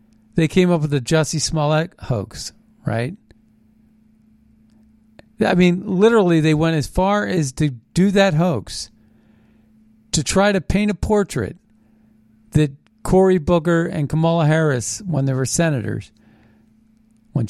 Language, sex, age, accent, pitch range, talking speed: English, male, 50-69, American, 130-190 Hz, 130 wpm